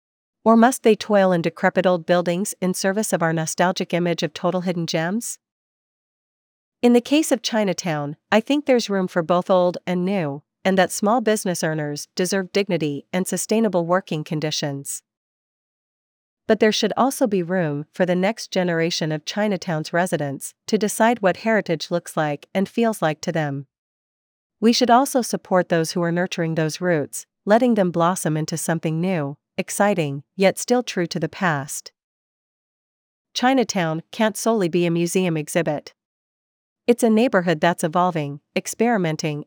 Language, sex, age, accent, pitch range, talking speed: English, female, 40-59, American, 165-205 Hz, 155 wpm